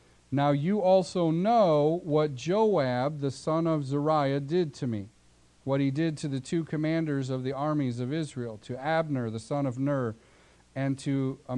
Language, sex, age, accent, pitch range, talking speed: English, male, 40-59, American, 125-160 Hz, 170 wpm